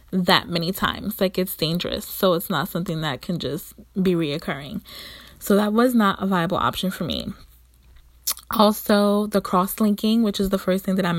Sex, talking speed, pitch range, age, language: female, 180 wpm, 170-200 Hz, 20-39, English